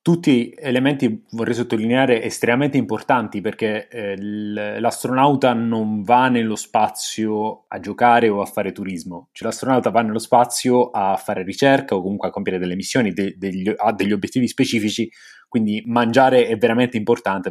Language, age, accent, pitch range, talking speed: Italian, 30-49, native, 110-140 Hz, 145 wpm